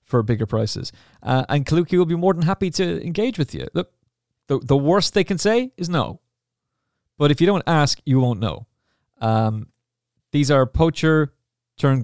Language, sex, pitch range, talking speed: English, male, 115-135 Hz, 185 wpm